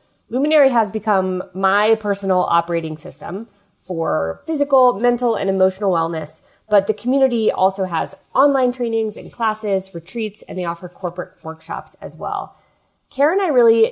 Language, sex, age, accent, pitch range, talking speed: English, female, 20-39, American, 175-215 Hz, 145 wpm